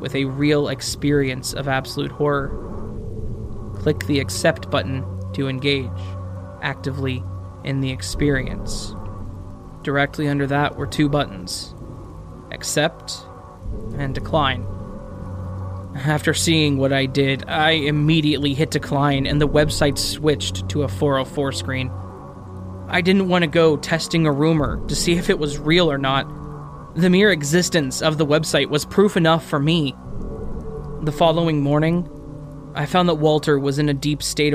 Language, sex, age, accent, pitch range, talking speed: English, male, 20-39, American, 130-160 Hz, 140 wpm